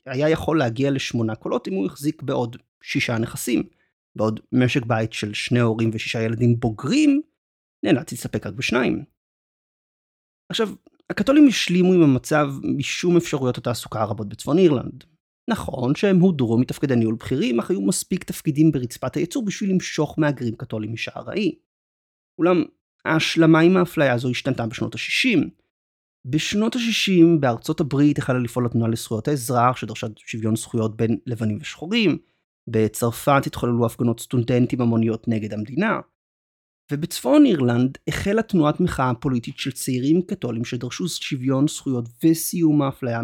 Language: Hebrew